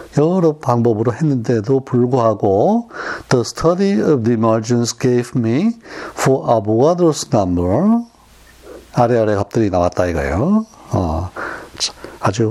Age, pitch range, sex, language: 60-79, 110-150 Hz, male, Korean